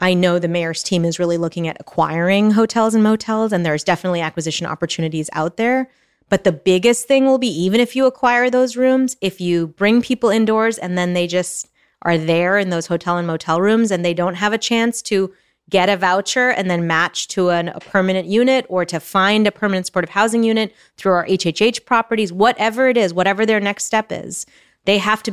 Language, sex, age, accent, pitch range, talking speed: English, female, 30-49, American, 180-225 Hz, 210 wpm